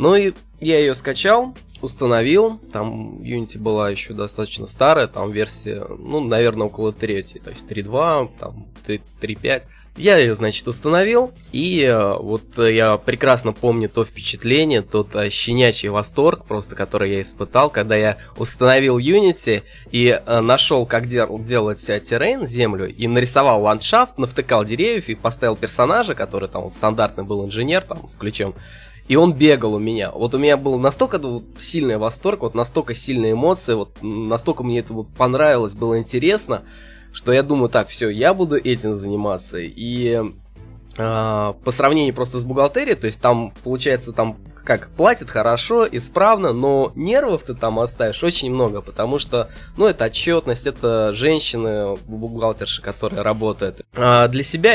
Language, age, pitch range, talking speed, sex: Russian, 20-39, 105-125 Hz, 150 wpm, male